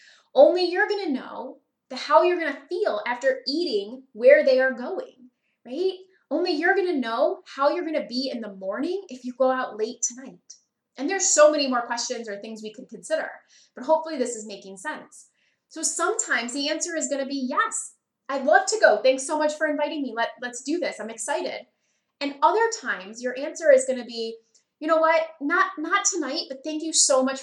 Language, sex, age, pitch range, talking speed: English, female, 20-39, 240-315 Hz, 215 wpm